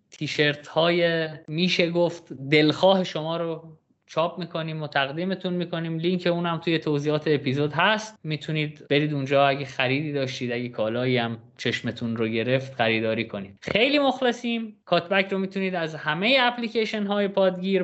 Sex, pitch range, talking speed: male, 145-195 Hz, 140 wpm